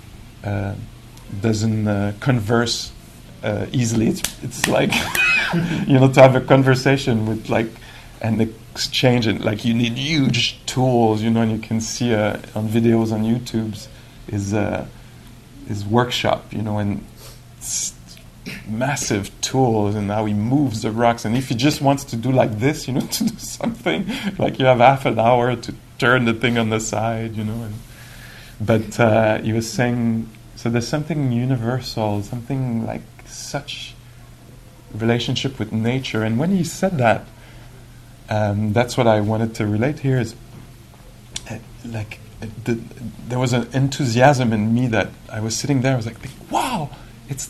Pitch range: 110-130 Hz